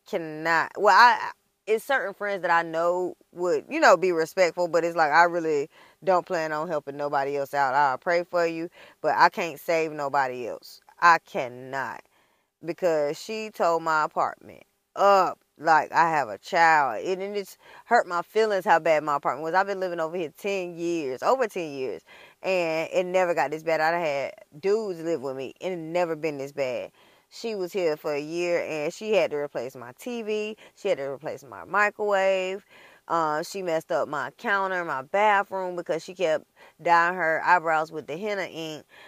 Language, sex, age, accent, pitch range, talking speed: English, female, 20-39, American, 165-215 Hz, 190 wpm